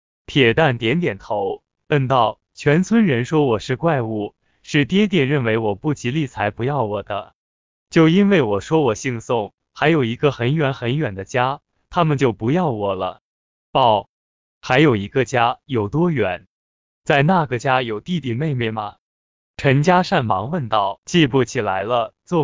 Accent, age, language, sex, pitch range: native, 20-39, Chinese, male, 115-155 Hz